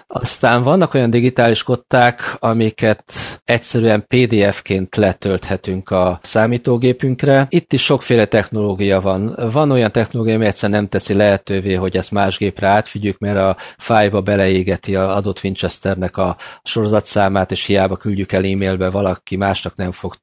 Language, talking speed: Hungarian, 140 wpm